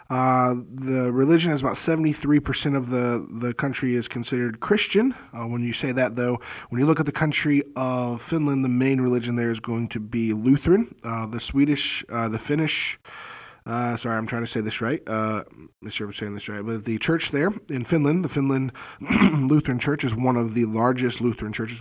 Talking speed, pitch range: 205 wpm, 120-145 Hz